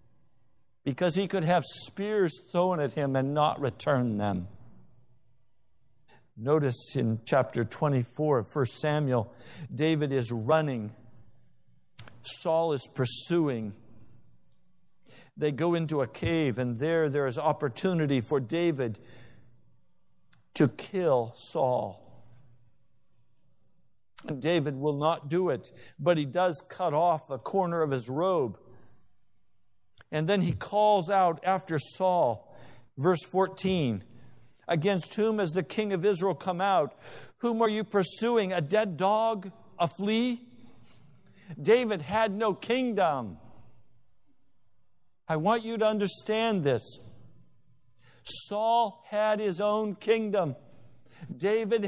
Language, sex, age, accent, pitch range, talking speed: English, male, 60-79, American, 125-195 Hz, 115 wpm